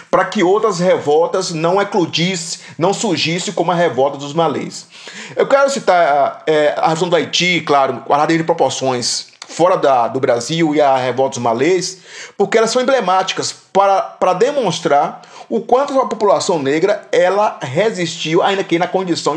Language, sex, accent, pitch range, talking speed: Portuguese, male, Brazilian, 155-200 Hz, 165 wpm